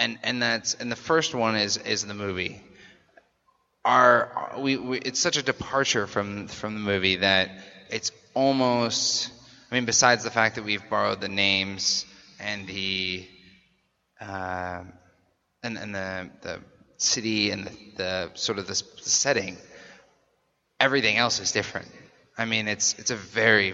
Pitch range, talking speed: 100-125 Hz, 155 wpm